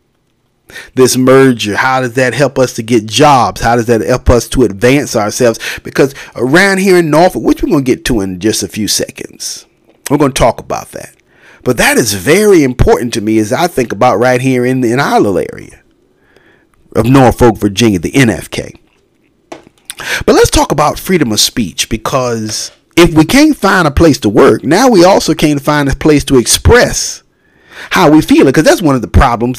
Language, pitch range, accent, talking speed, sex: English, 120-150 Hz, American, 200 wpm, male